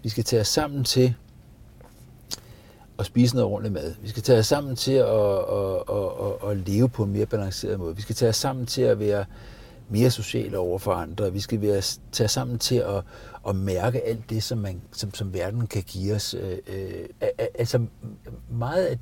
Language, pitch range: Danish, 100-125 Hz